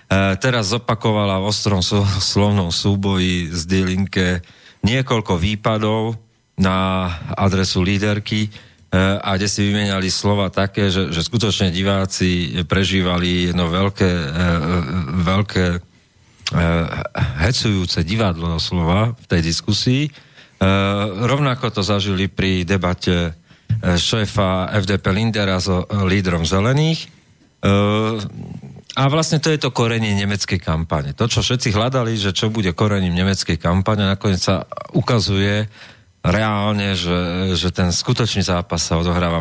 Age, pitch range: 40-59, 90-110 Hz